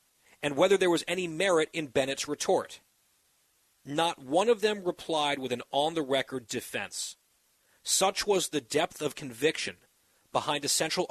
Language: English